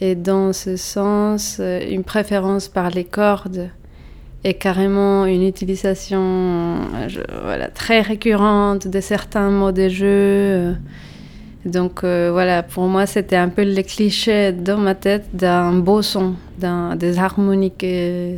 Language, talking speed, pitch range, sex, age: French, 135 wpm, 180-200 Hz, female, 30-49